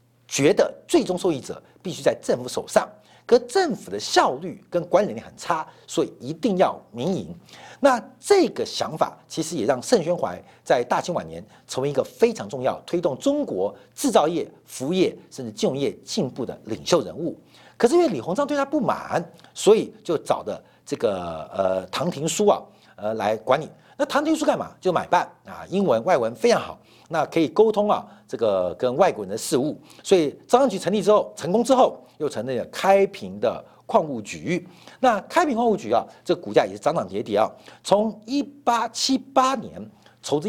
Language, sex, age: Chinese, male, 50-69